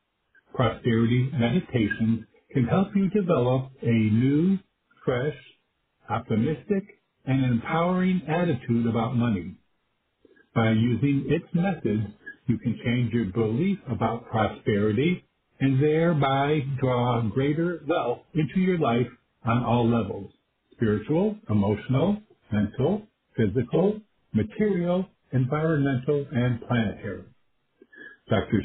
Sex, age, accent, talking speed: male, 60-79, American, 95 wpm